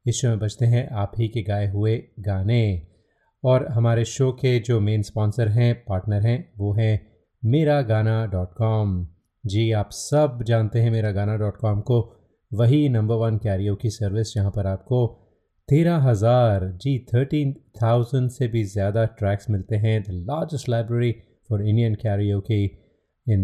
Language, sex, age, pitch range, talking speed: Hindi, male, 30-49, 105-125 Hz, 155 wpm